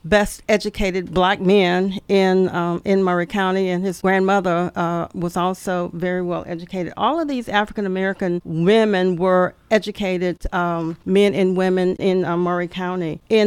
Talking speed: 150 wpm